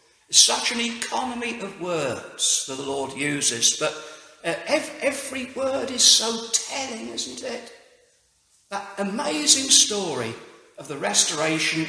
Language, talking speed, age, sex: English, 115 wpm, 60-79, male